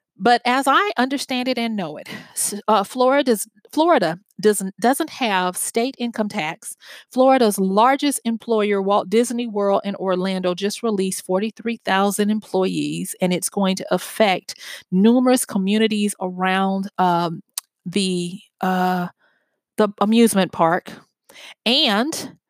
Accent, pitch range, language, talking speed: American, 190-240 Hz, English, 115 wpm